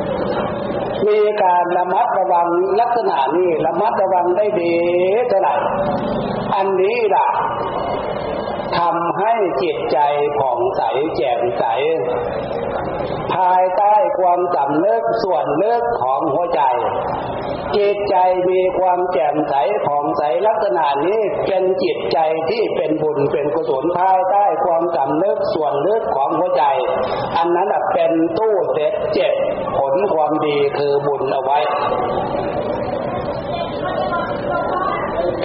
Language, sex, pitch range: Thai, male, 165-205 Hz